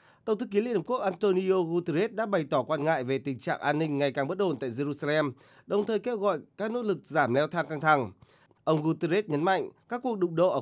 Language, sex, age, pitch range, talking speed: Vietnamese, male, 20-39, 140-195 Hz, 255 wpm